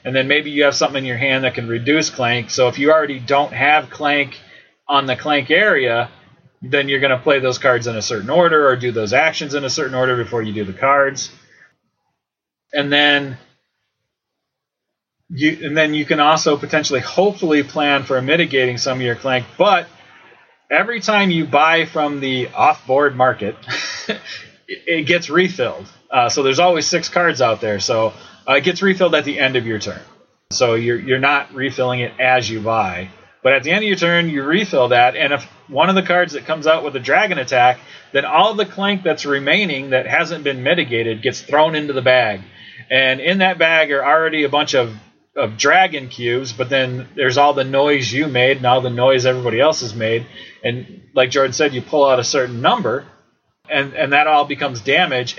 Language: English